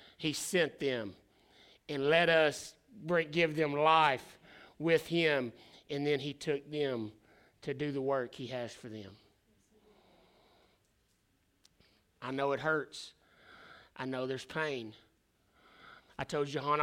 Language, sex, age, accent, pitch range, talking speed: English, male, 30-49, American, 120-155 Hz, 130 wpm